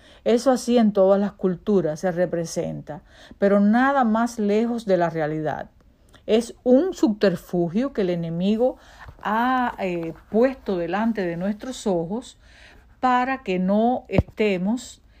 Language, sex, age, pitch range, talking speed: Spanish, female, 50-69, 180-225 Hz, 125 wpm